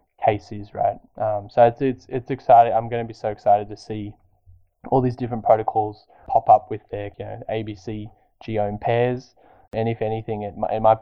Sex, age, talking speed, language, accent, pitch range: male, 10-29, 195 wpm, English, Australian, 105-115 Hz